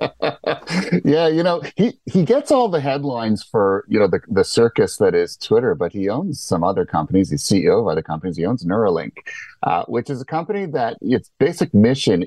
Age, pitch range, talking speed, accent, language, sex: 30-49, 95-150 Hz, 200 wpm, American, English, male